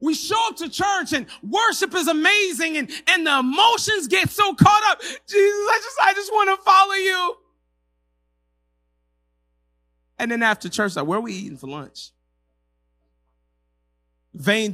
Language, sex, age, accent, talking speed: English, male, 30-49, American, 155 wpm